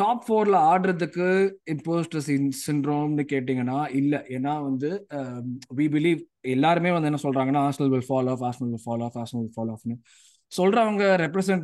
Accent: native